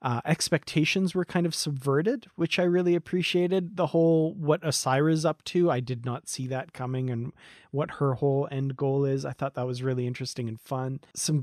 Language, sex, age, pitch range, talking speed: English, male, 30-49, 130-165 Hz, 200 wpm